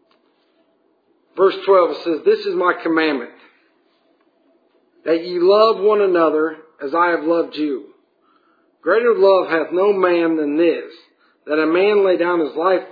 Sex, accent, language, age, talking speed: male, American, English, 50-69, 150 wpm